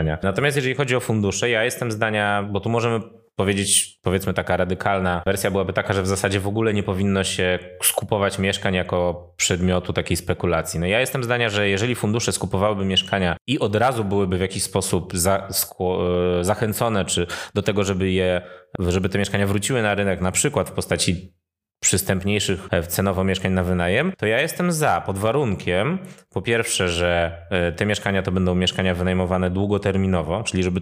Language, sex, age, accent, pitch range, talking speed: Polish, male, 20-39, native, 90-110 Hz, 165 wpm